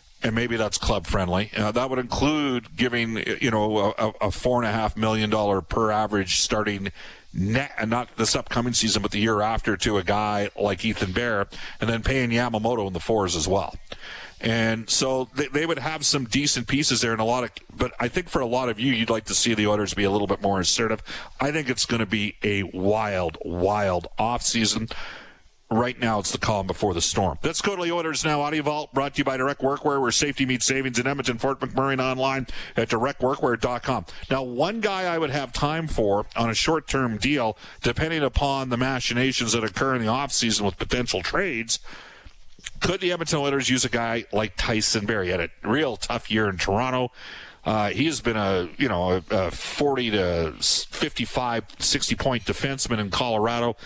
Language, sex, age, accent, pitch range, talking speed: English, male, 40-59, American, 110-135 Hz, 200 wpm